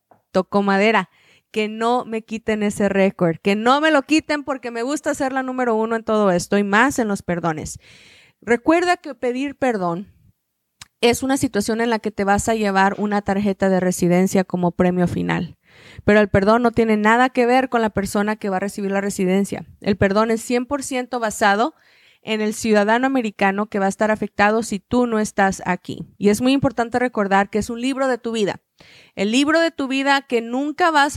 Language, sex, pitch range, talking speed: Spanish, female, 200-255 Hz, 200 wpm